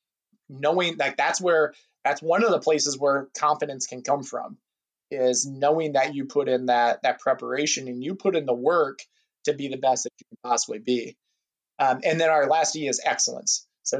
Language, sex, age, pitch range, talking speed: English, male, 20-39, 125-155 Hz, 205 wpm